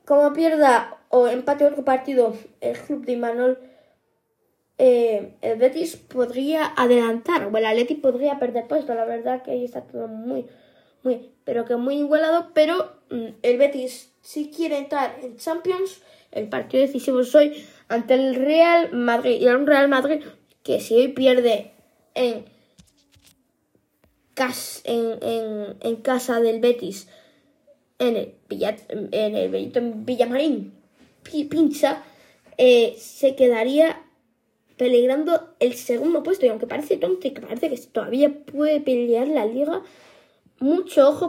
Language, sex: Spanish, female